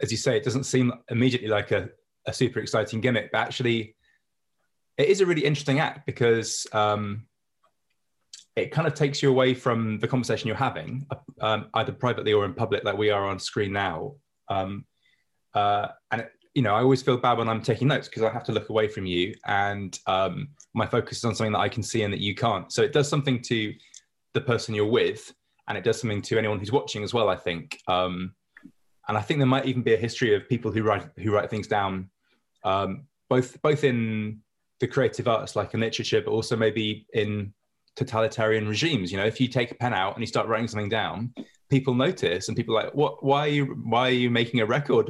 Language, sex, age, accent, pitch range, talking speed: English, male, 20-39, British, 105-135 Hz, 225 wpm